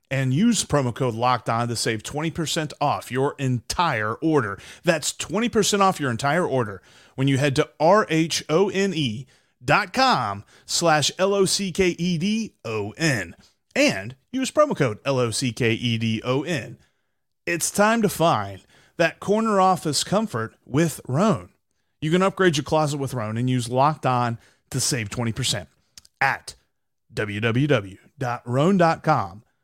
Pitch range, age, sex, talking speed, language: 120-180 Hz, 30-49, male, 120 wpm, English